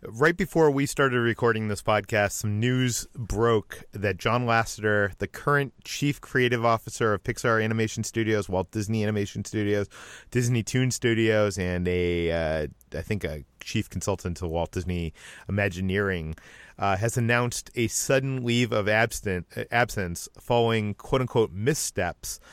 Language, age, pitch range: English, 30-49, 100-120 Hz